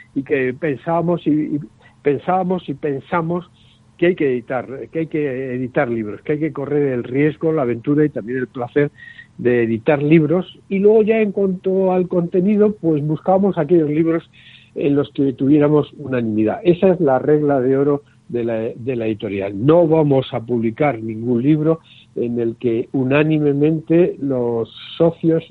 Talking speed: 165 wpm